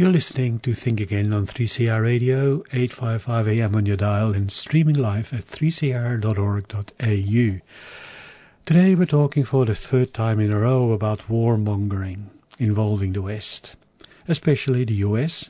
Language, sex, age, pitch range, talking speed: English, male, 50-69, 110-145 Hz, 140 wpm